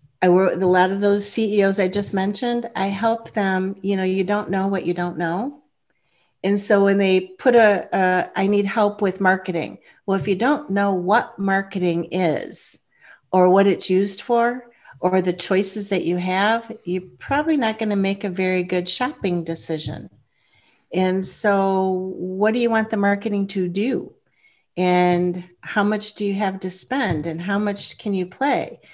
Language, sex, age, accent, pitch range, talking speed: English, female, 50-69, American, 185-225 Hz, 185 wpm